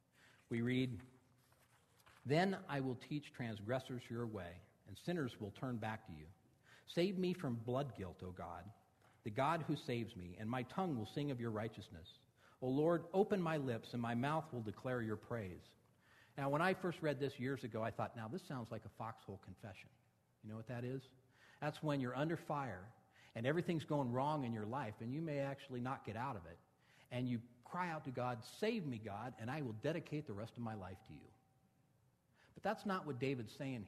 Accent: American